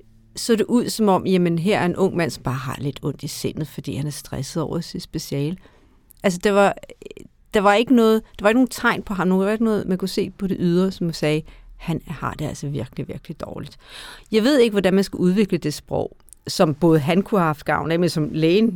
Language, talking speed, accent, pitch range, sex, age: Danish, 250 wpm, native, 155-205 Hz, female, 50-69